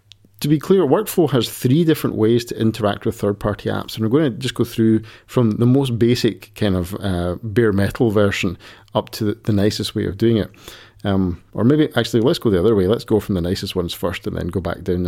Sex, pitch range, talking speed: male, 100-120 Hz, 235 wpm